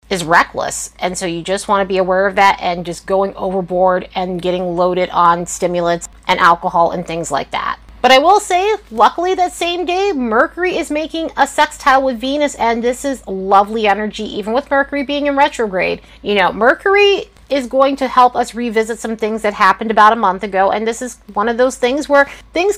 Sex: female